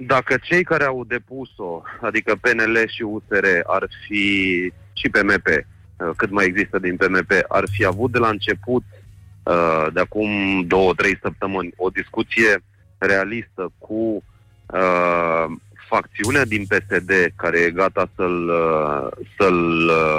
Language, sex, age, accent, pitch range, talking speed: Romanian, male, 30-49, native, 95-115 Hz, 120 wpm